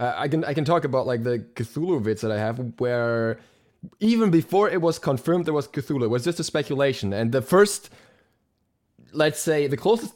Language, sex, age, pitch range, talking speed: English, male, 20-39, 115-150 Hz, 205 wpm